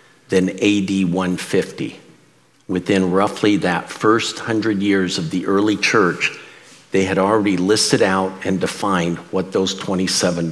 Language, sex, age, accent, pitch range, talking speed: English, male, 50-69, American, 95-115 Hz, 130 wpm